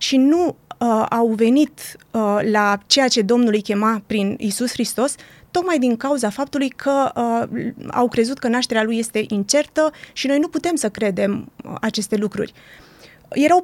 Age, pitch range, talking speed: 30-49, 230-285 Hz, 165 wpm